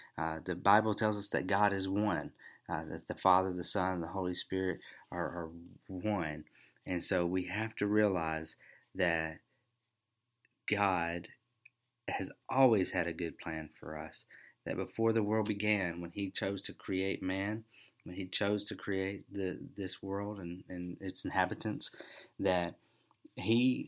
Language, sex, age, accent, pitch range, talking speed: English, male, 30-49, American, 90-105 Hz, 160 wpm